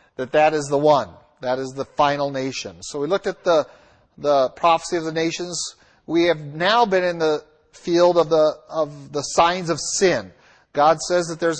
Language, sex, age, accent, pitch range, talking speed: English, male, 40-59, American, 145-180 Hz, 195 wpm